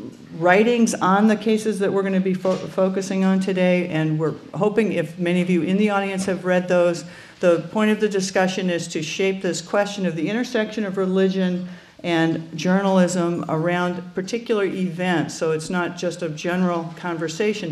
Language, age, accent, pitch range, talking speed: English, 50-69, American, 165-200 Hz, 175 wpm